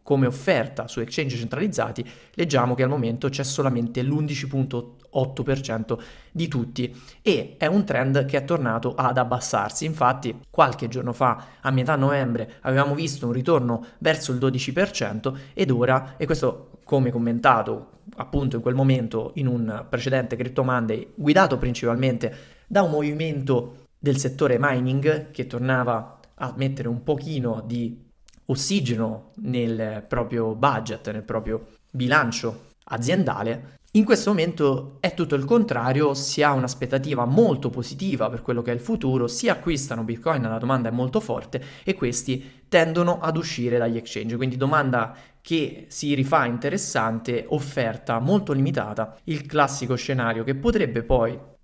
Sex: male